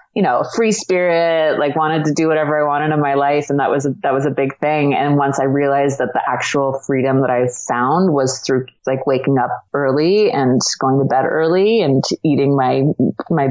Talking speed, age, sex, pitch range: 215 wpm, 30-49, female, 135-155 Hz